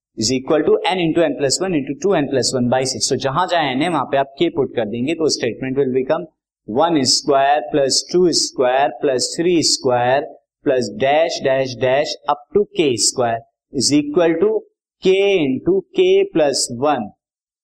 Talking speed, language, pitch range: 140 wpm, Hindi, 130-200 Hz